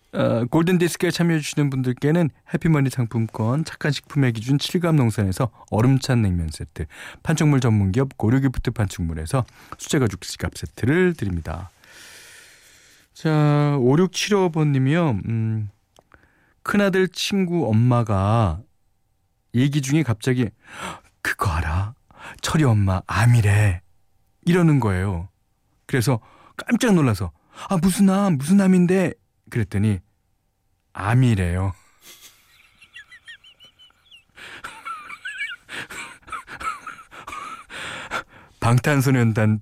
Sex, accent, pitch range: male, native, 105-165 Hz